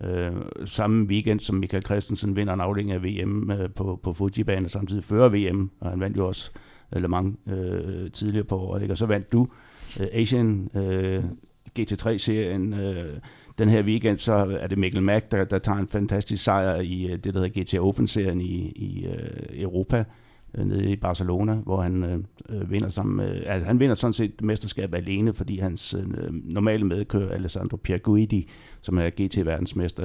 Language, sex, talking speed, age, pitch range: Danish, male, 165 wpm, 60-79, 90-105 Hz